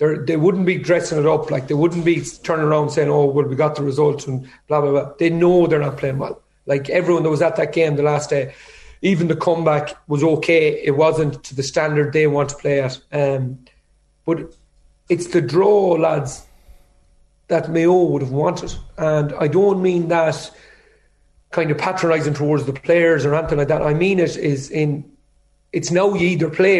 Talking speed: 200 wpm